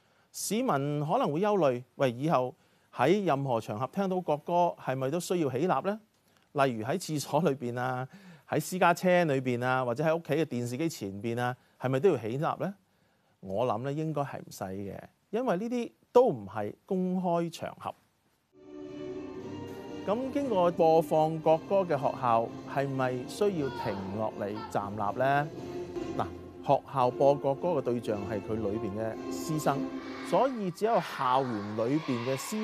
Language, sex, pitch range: Chinese, male, 115-175 Hz